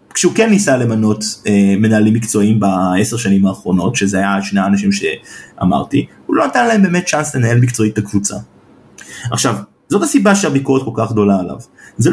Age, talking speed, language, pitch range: 30-49, 170 wpm, Hebrew, 110-165 Hz